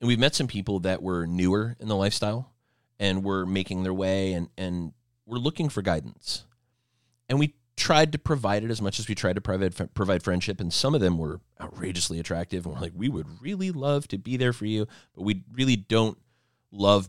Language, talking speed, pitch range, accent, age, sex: English, 215 wpm, 90-115 Hz, American, 30-49, male